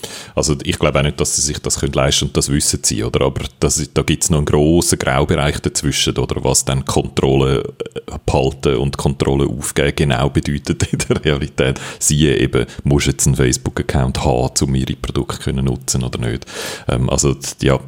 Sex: male